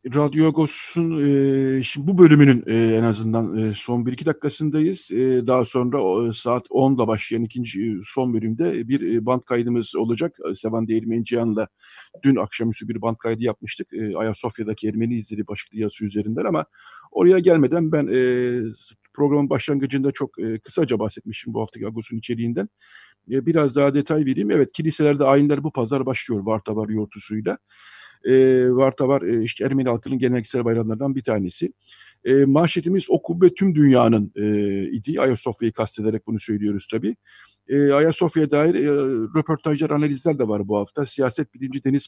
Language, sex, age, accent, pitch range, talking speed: Turkish, male, 50-69, native, 110-140 Hz, 155 wpm